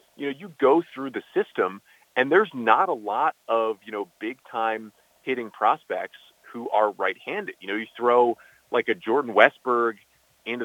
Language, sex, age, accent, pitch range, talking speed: English, male, 30-49, American, 105-155 Hz, 180 wpm